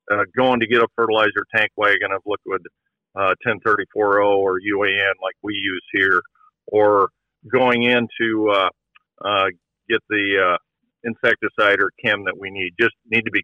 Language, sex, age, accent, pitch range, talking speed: English, male, 50-69, American, 100-125 Hz, 165 wpm